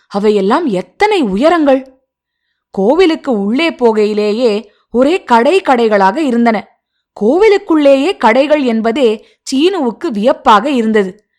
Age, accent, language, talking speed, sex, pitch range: 20-39, native, Tamil, 80 wpm, female, 210-300 Hz